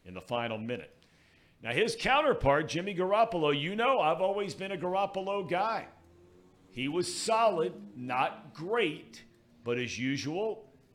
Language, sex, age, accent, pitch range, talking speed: English, male, 50-69, American, 115-150 Hz, 135 wpm